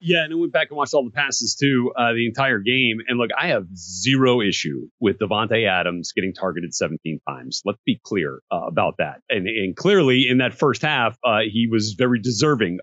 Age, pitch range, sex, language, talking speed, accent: 40-59, 105-140 Hz, male, English, 215 wpm, American